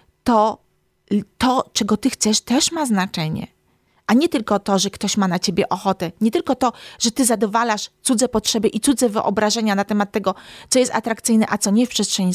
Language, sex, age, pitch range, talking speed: Polish, female, 30-49, 195-265 Hz, 195 wpm